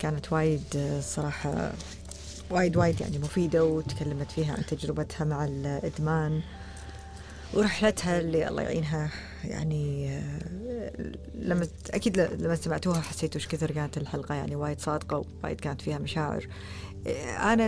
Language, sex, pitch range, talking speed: Arabic, female, 140-175 Hz, 120 wpm